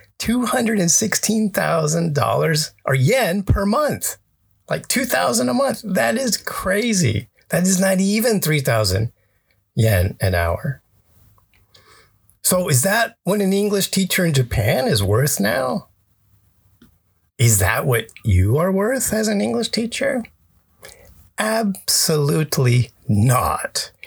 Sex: male